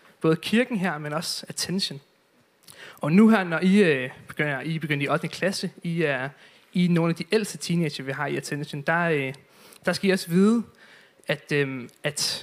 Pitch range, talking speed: 150-190 Hz, 200 wpm